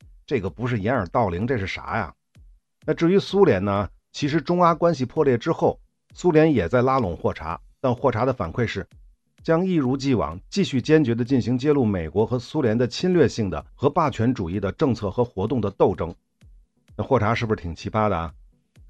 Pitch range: 100-145 Hz